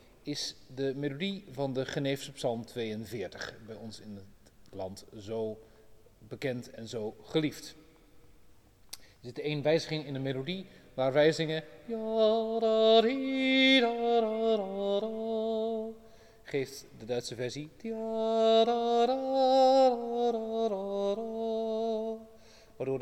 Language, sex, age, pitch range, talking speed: Dutch, male, 30-49, 130-195 Hz, 85 wpm